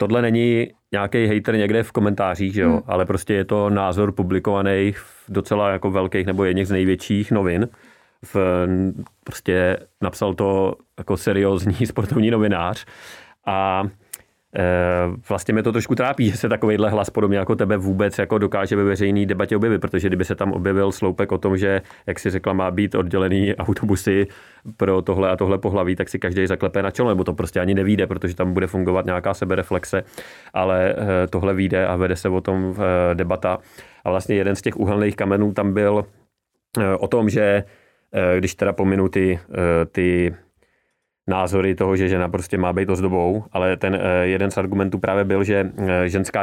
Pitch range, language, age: 95-100 Hz, Czech, 30-49